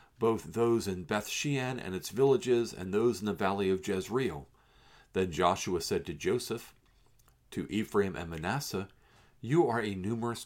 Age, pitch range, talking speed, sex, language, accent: 50-69, 90-120 Hz, 160 wpm, male, English, American